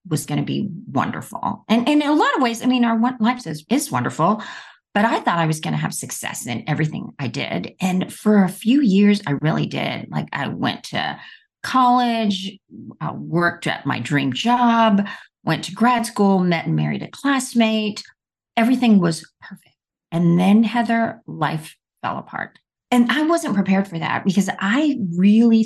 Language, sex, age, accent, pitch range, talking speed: English, female, 40-59, American, 160-225 Hz, 175 wpm